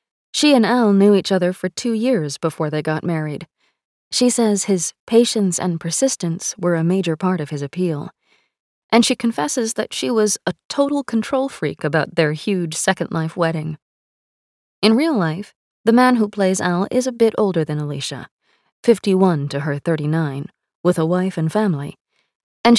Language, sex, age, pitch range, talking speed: English, female, 20-39, 165-220 Hz, 175 wpm